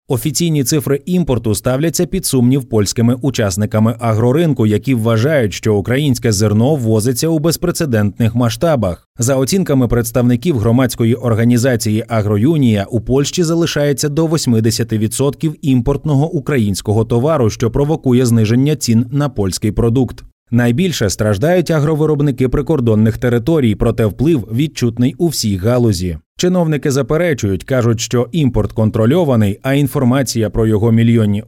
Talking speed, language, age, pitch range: 115 wpm, Ukrainian, 30-49, 110-140 Hz